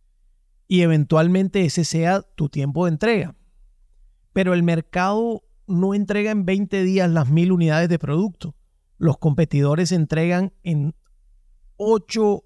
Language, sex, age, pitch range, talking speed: Spanish, male, 30-49, 150-190 Hz, 125 wpm